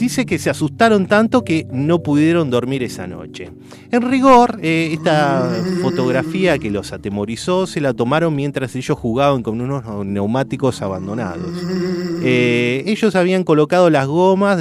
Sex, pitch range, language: male, 120-180 Hz, Spanish